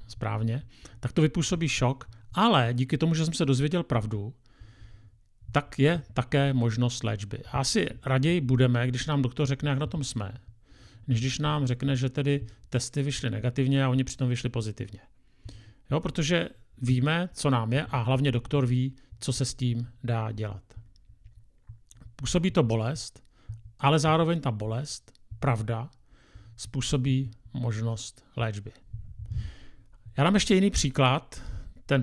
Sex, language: male, Czech